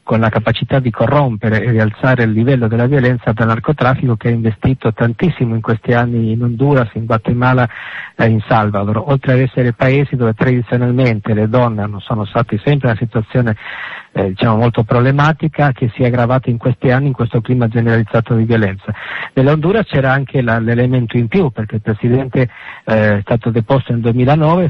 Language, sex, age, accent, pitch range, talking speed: Italian, male, 50-69, native, 115-130 Hz, 180 wpm